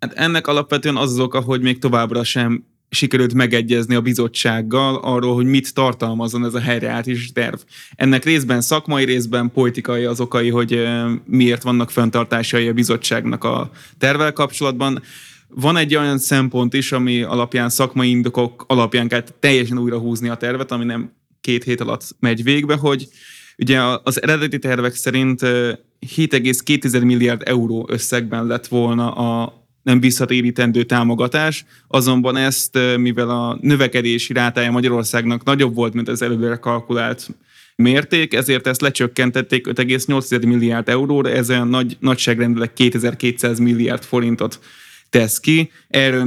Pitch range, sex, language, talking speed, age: 120-130 Hz, male, Hungarian, 140 wpm, 20-39